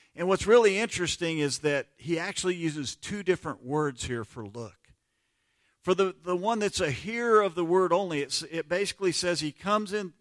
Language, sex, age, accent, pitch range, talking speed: English, male, 50-69, American, 130-190 Hz, 190 wpm